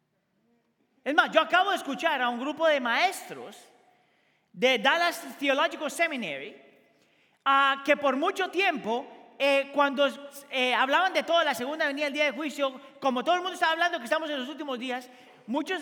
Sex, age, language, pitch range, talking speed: male, 40-59, Spanish, 245-315 Hz, 175 wpm